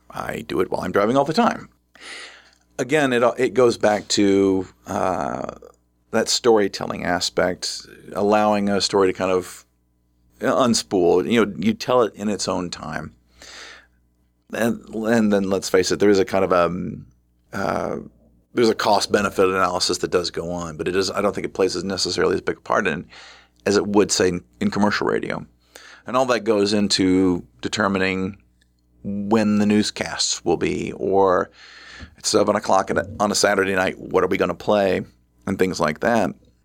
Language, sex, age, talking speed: English, male, 40-59, 185 wpm